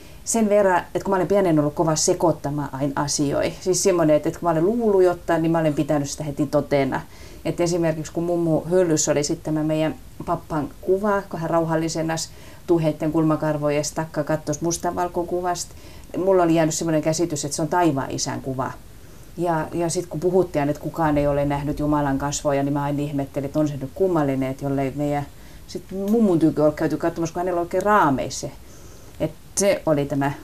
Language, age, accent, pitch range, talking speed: Finnish, 30-49, native, 150-180 Hz, 185 wpm